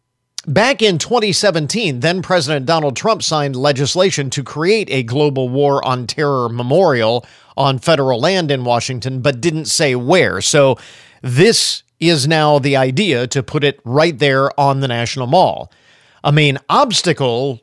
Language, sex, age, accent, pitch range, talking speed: English, male, 40-59, American, 135-165 Hz, 145 wpm